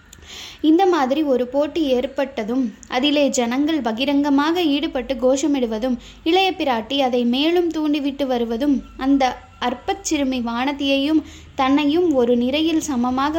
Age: 20-39